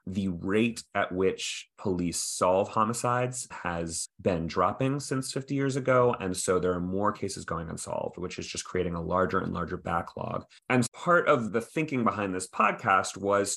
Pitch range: 90-120 Hz